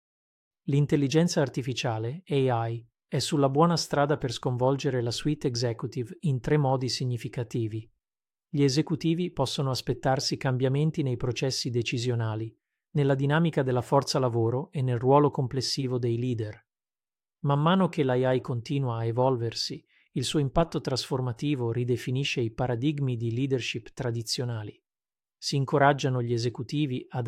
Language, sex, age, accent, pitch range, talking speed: Italian, male, 40-59, native, 125-145 Hz, 125 wpm